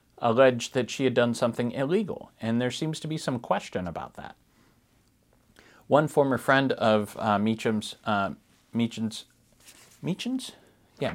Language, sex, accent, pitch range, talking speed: English, male, American, 105-130 Hz, 130 wpm